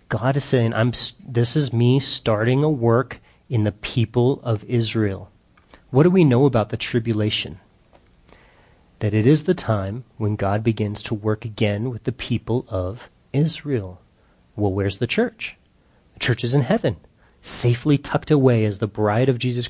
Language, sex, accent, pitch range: English, male, American, 105-130 Hz